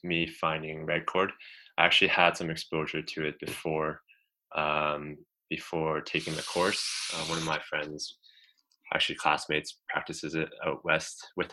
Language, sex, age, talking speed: English, male, 20-39, 150 wpm